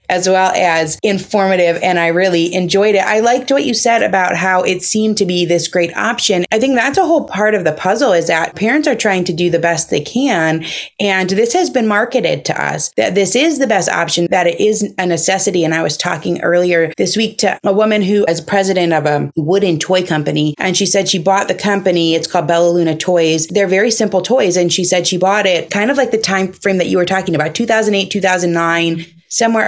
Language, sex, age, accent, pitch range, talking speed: English, female, 30-49, American, 170-210 Hz, 235 wpm